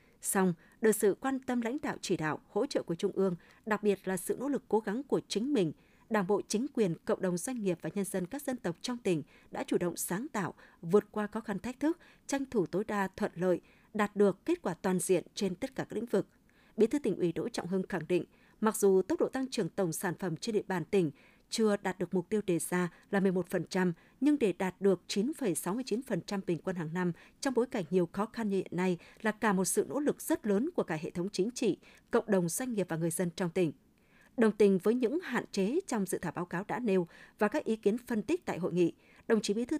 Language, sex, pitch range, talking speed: Vietnamese, female, 180-225 Hz, 255 wpm